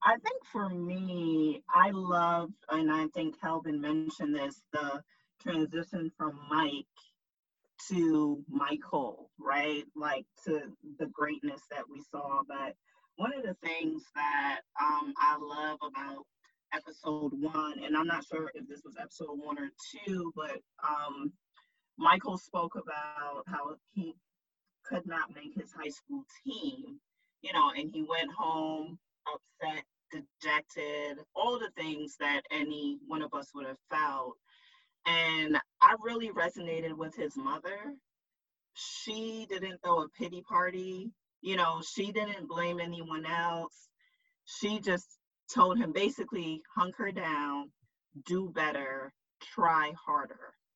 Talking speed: 135 wpm